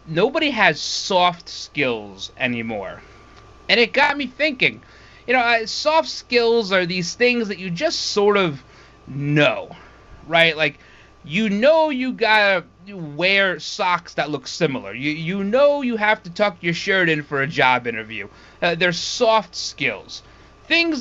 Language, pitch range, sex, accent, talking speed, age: English, 145-215 Hz, male, American, 155 wpm, 30-49